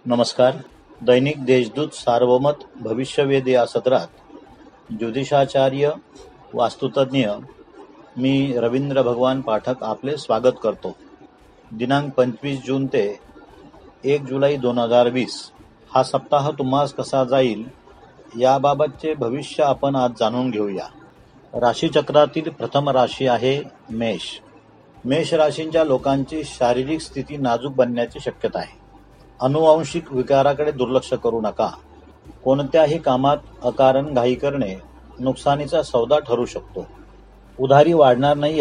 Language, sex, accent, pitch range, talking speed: Marathi, male, native, 120-145 Hz, 100 wpm